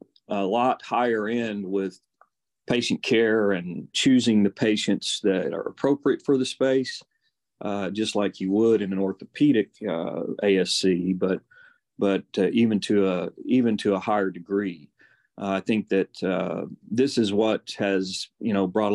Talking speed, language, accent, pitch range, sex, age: 160 wpm, English, American, 95-110 Hz, male, 40-59